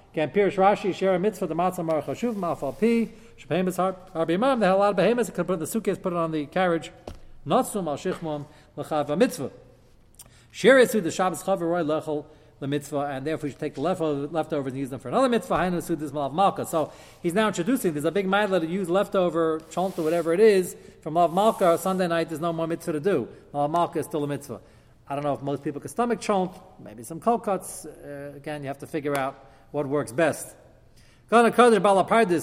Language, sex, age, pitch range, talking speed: English, male, 40-59, 145-190 Hz, 210 wpm